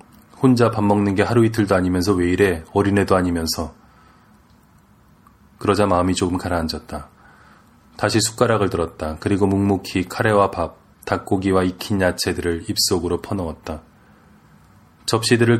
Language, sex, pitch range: Korean, male, 90-110 Hz